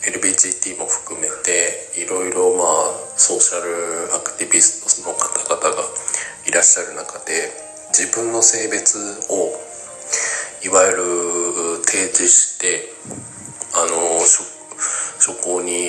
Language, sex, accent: Japanese, male, native